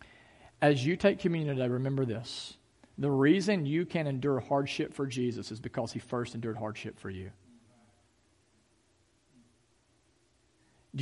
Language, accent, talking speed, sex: English, American, 130 wpm, male